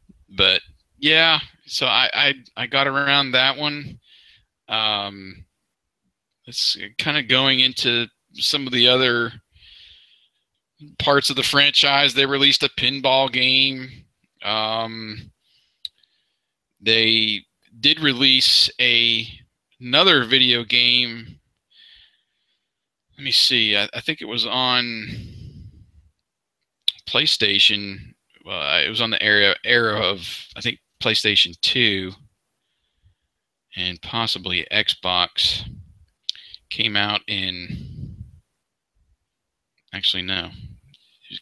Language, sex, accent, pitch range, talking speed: English, male, American, 100-130 Hz, 100 wpm